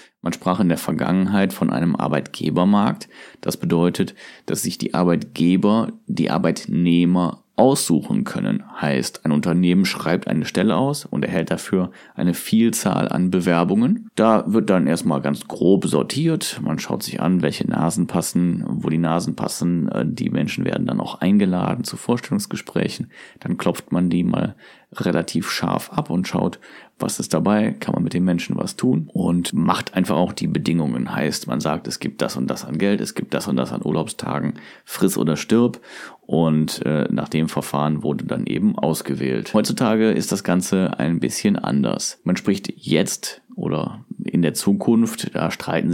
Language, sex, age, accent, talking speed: German, male, 30-49, German, 170 wpm